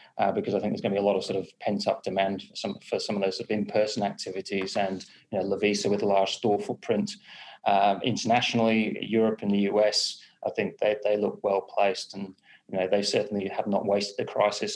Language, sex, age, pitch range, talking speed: English, male, 30-49, 100-105 Hz, 240 wpm